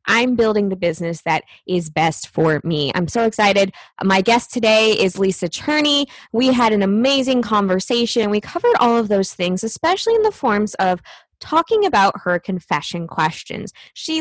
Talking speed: 170 wpm